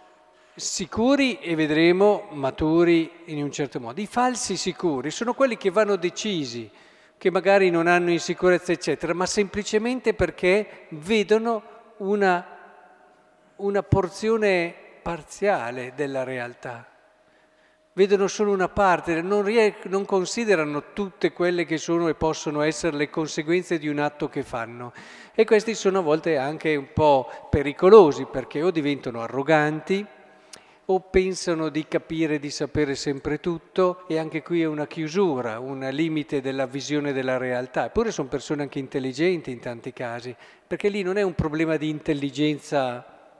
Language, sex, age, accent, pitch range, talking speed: Italian, male, 50-69, native, 145-190 Hz, 140 wpm